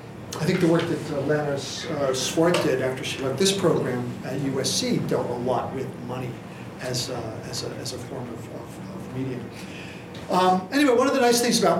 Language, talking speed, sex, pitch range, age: English, 205 wpm, male, 135-170 Hz, 50-69